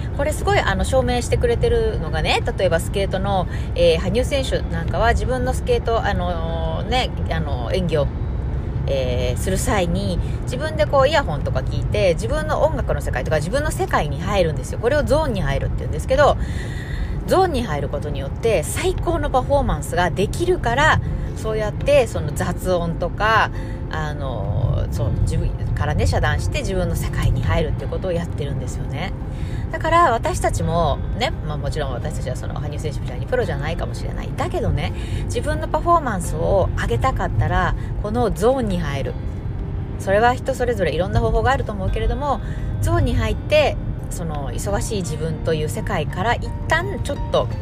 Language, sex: Japanese, female